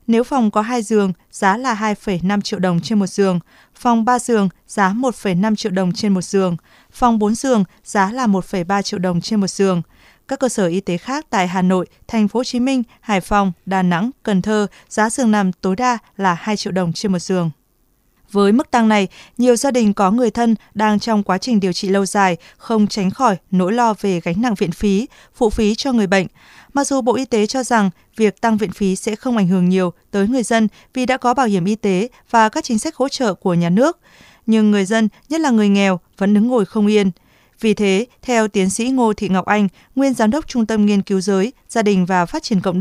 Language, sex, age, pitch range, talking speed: Vietnamese, female, 20-39, 190-235 Hz, 235 wpm